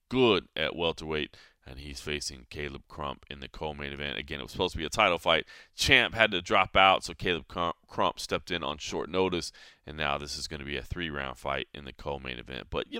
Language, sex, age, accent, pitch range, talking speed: English, male, 30-49, American, 75-100 Hz, 230 wpm